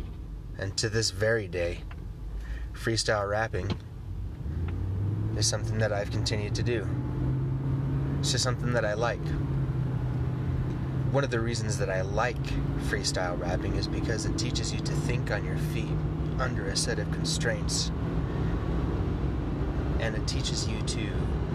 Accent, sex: American, male